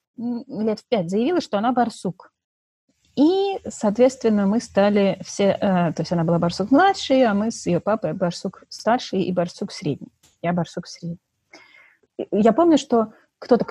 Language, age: Russian, 30-49